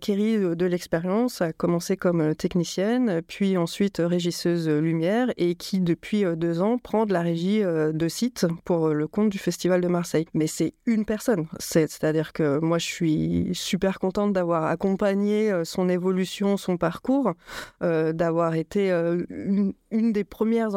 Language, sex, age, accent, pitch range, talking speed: French, female, 30-49, French, 170-210 Hz, 155 wpm